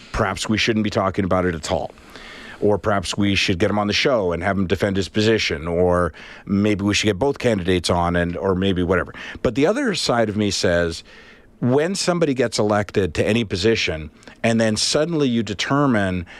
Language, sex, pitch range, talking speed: English, male, 105-145 Hz, 200 wpm